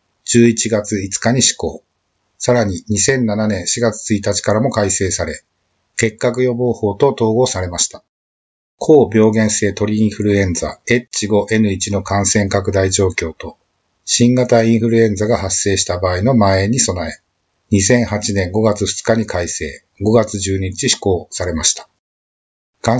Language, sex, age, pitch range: Japanese, male, 50-69, 95-115 Hz